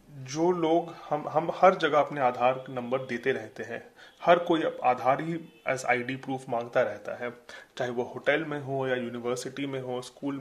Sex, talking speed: male, 180 wpm